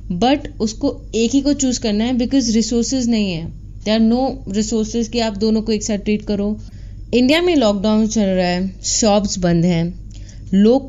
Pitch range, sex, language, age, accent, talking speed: 165-265 Hz, female, Hindi, 20-39, native, 180 wpm